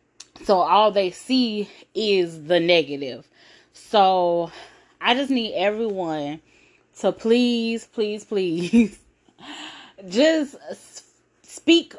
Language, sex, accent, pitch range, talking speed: English, female, American, 175-230 Hz, 90 wpm